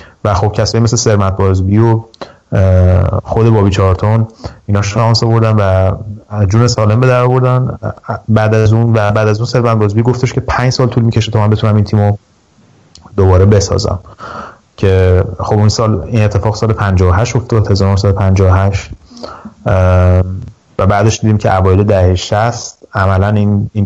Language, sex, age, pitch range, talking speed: Persian, male, 30-49, 95-115 Hz, 165 wpm